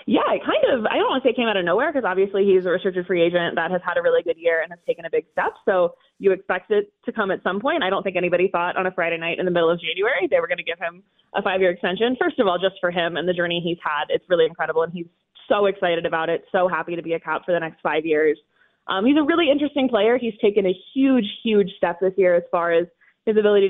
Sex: female